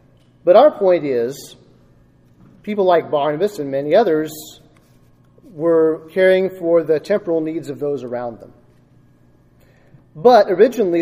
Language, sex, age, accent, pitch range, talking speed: English, male, 40-59, American, 130-180 Hz, 120 wpm